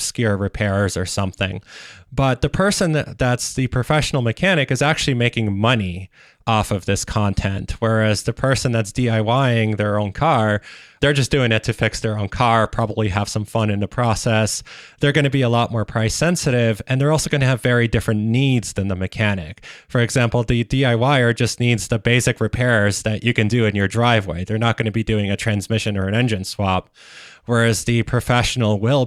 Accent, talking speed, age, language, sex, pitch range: American, 200 wpm, 20-39, English, male, 105-125 Hz